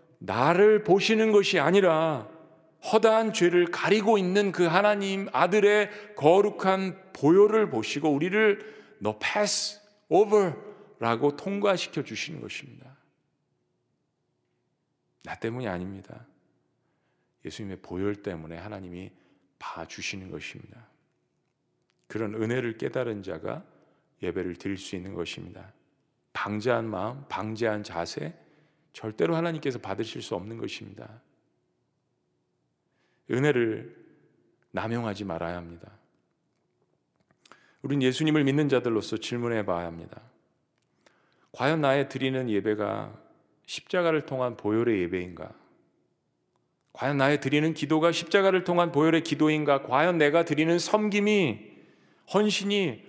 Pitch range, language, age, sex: 110-185 Hz, Korean, 40-59, male